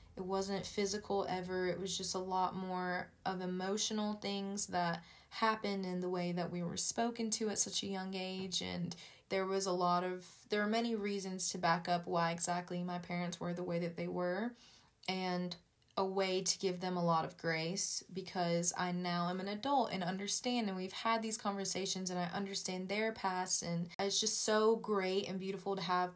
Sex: female